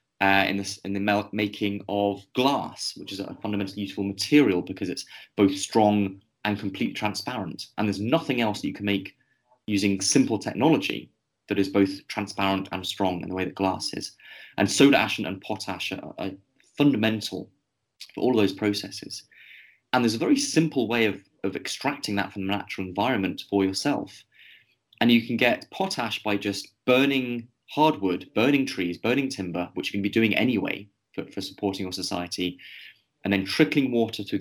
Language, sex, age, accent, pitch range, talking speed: English, male, 20-39, British, 95-115 Hz, 180 wpm